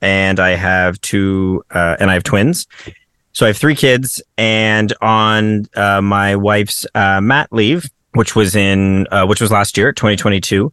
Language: English